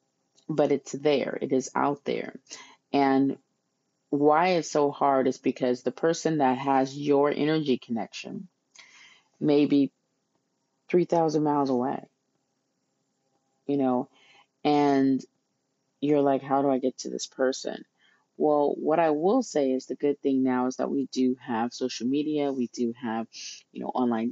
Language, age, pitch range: English, 30-49, 130-145 Hz